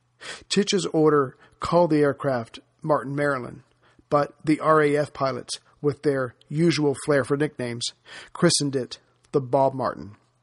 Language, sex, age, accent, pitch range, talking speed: English, male, 50-69, American, 135-155 Hz, 120 wpm